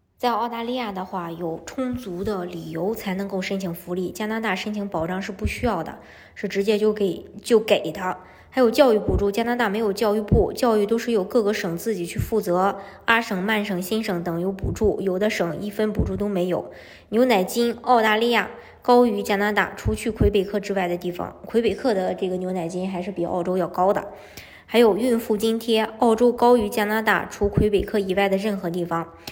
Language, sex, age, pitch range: Chinese, male, 20-39, 185-220 Hz